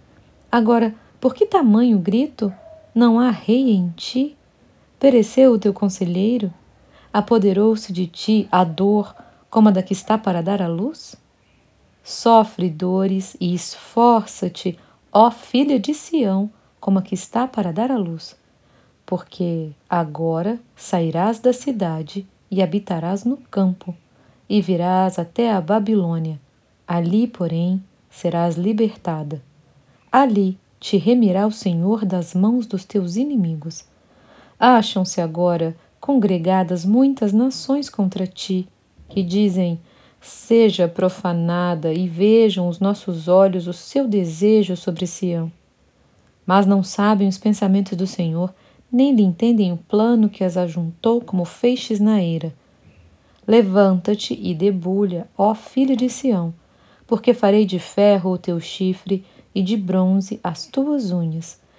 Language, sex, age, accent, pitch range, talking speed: Portuguese, female, 40-59, Brazilian, 175-220 Hz, 130 wpm